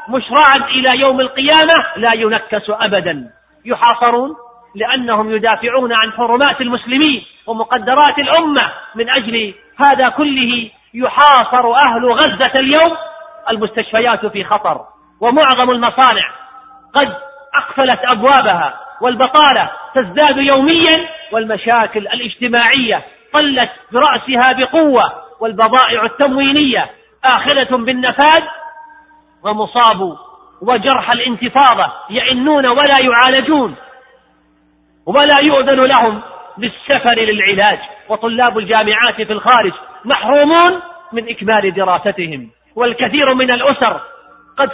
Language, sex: Arabic, male